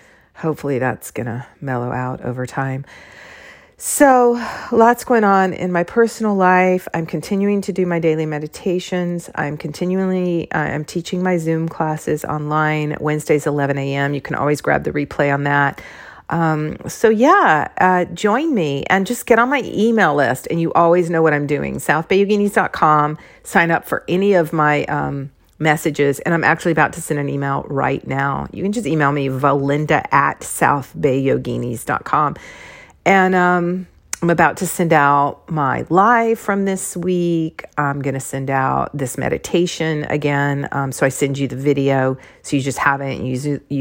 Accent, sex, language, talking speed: American, female, English, 170 wpm